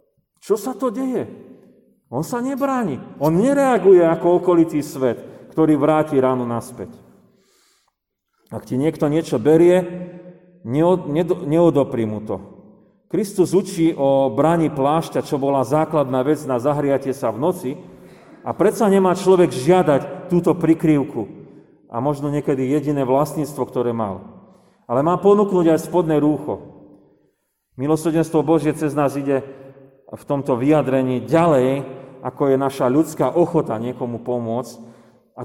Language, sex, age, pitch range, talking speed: Slovak, male, 40-59, 130-165 Hz, 125 wpm